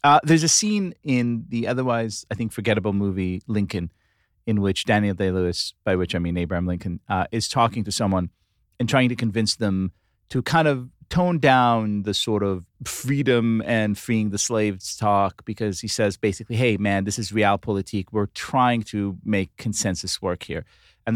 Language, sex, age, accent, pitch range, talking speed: English, male, 30-49, American, 95-125 Hz, 180 wpm